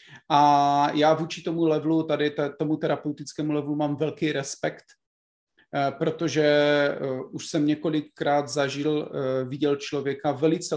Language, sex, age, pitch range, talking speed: Czech, male, 30-49, 140-155 Hz, 110 wpm